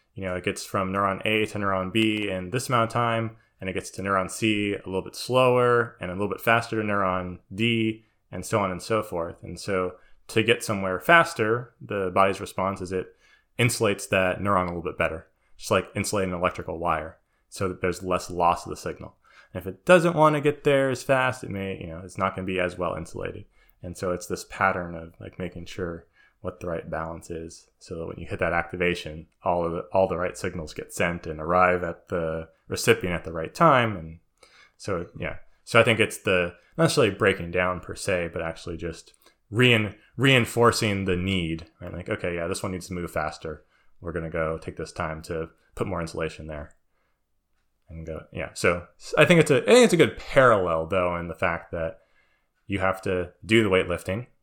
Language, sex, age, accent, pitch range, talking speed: English, male, 20-39, American, 85-110 Hz, 220 wpm